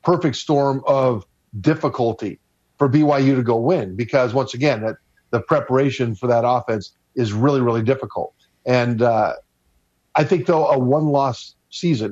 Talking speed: 150 wpm